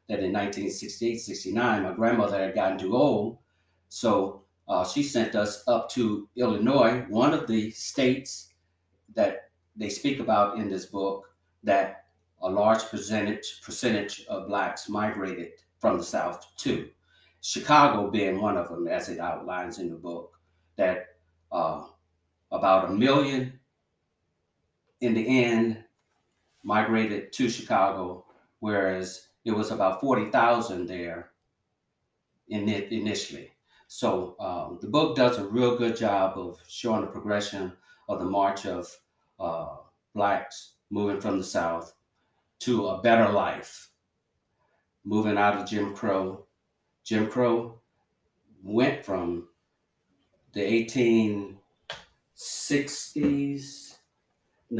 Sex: male